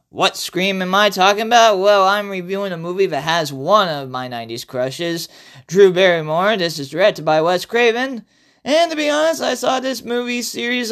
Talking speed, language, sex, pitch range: 190 wpm, English, male, 130-205 Hz